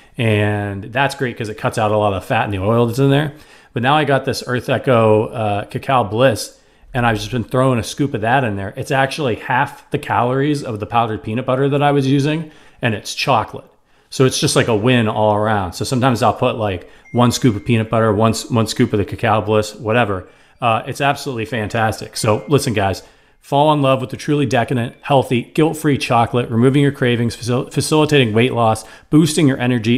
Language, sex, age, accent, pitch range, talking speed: English, male, 40-59, American, 110-135 Hz, 215 wpm